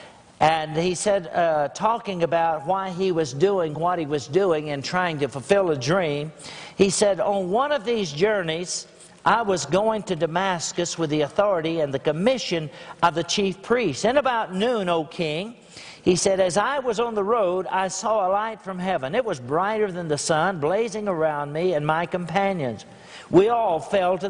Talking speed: 190 wpm